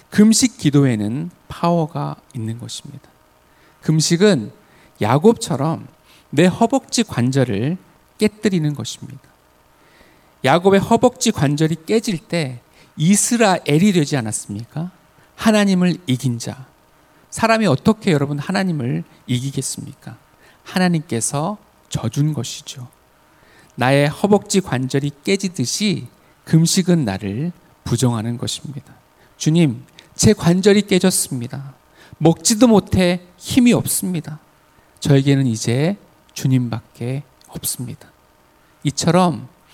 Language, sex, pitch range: Korean, male, 125-185 Hz